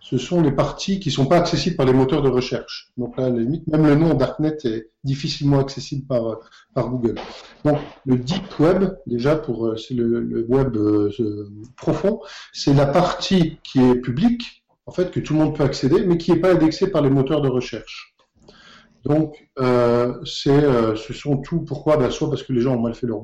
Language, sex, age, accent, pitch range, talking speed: French, male, 50-69, French, 125-155 Hz, 205 wpm